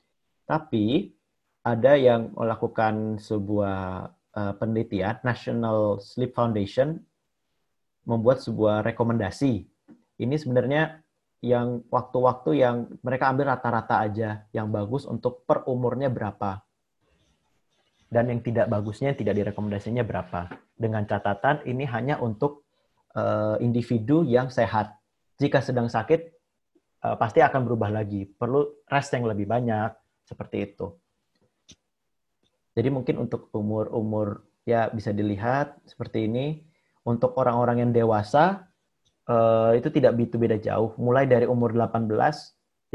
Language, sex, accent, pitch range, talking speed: Indonesian, male, native, 110-130 Hz, 110 wpm